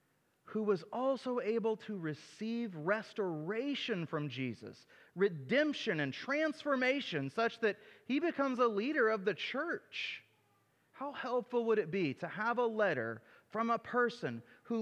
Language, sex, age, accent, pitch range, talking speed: English, male, 30-49, American, 140-220 Hz, 140 wpm